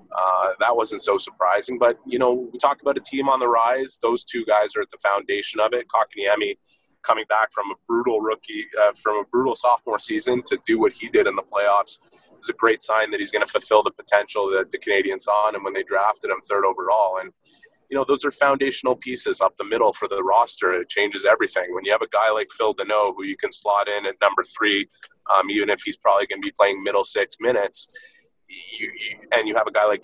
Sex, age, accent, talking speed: male, 30-49, American, 240 wpm